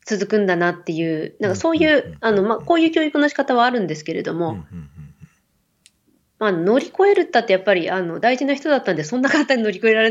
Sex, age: female, 20-39